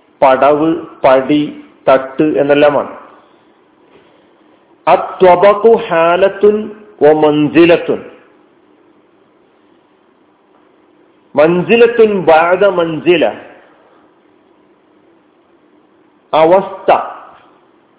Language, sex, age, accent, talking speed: Malayalam, male, 50-69, native, 45 wpm